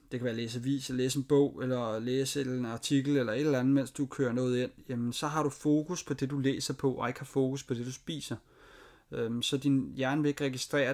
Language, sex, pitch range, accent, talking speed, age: Danish, male, 125-150 Hz, native, 250 wpm, 30-49